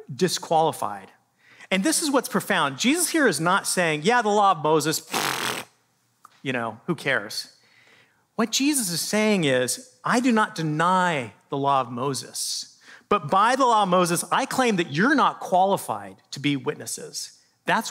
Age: 40-59